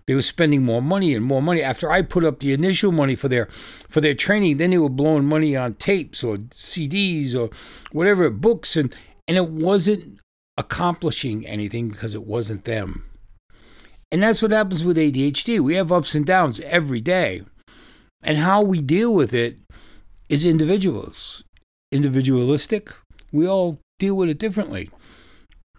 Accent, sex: American, male